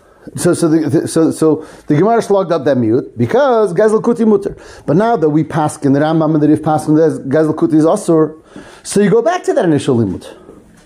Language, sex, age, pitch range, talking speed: English, male, 30-49, 155-190 Hz, 215 wpm